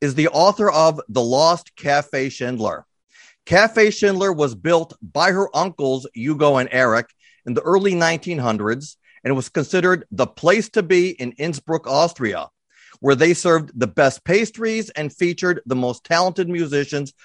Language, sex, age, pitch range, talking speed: English, male, 40-59, 140-180 Hz, 155 wpm